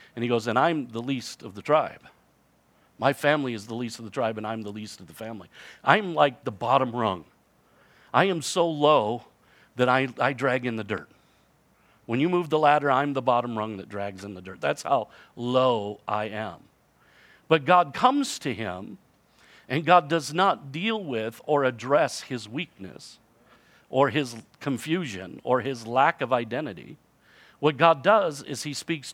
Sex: male